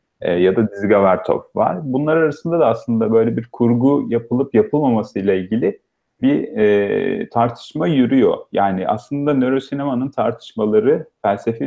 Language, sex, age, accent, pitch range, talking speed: Turkish, male, 40-59, native, 100-140 Hz, 130 wpm